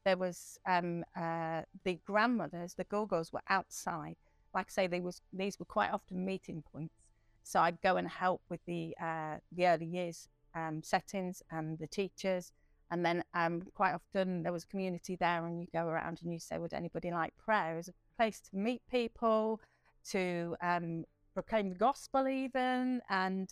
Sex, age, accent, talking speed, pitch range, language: female, 40-59, British, 185 wpm, 170-205 Hz, English